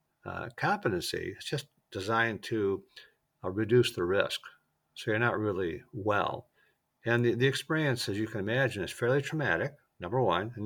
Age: 60-79